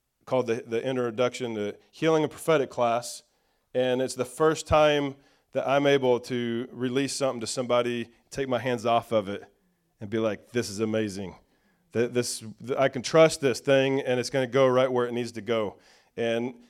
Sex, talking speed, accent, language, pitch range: male, 190 wpm, American, English, 120-140 Hz